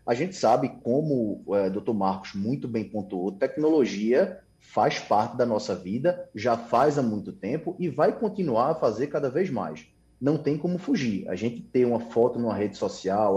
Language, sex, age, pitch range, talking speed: Portuguese, male, 20-39, 110-175 Hz, 185 wpm